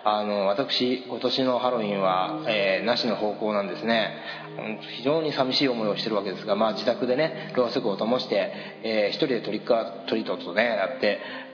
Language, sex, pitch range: Japanese, male, 120-190 Hz